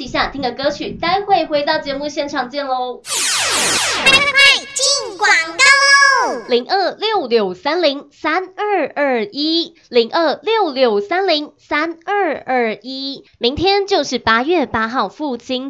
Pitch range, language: 235-335 Hz, Chinese